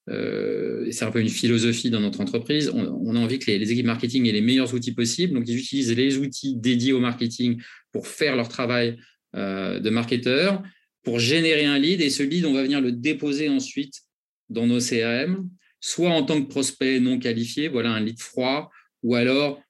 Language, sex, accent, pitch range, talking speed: French, male, French, 115-135 Hz, 205 wpm